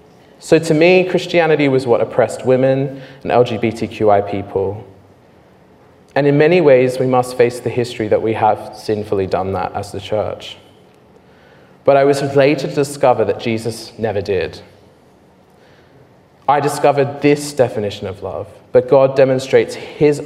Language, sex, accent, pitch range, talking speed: English, male, British, 105-130 Hz, 145 wpm